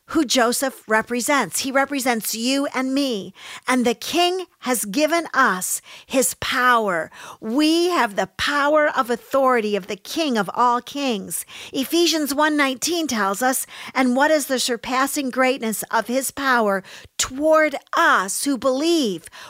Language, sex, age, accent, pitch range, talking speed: English, female, 50-69, American, 215-275 Hz, 140 wpm